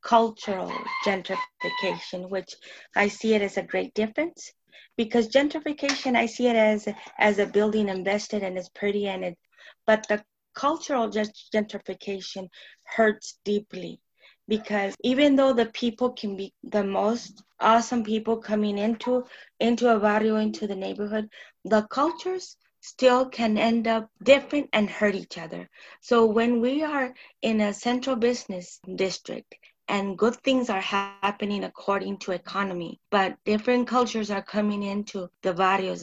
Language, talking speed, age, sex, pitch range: English, 145 wpm, 20-39, female, 195-240 Hz